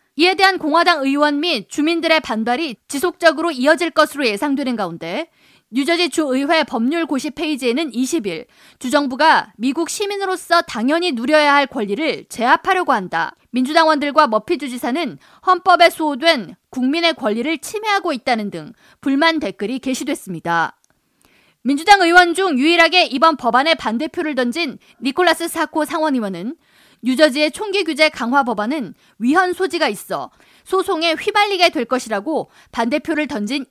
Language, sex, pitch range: Korean, female, 245-330 Hz